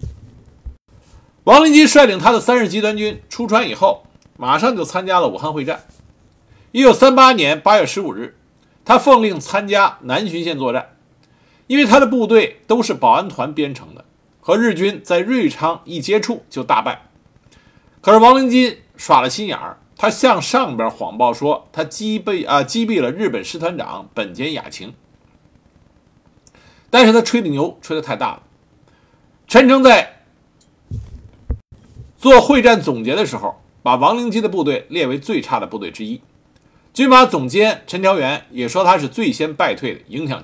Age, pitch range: 50-69, 165-250 Hz